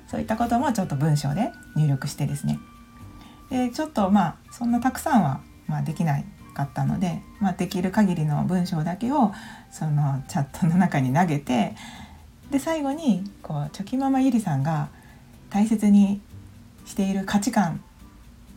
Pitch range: 145-215 Hz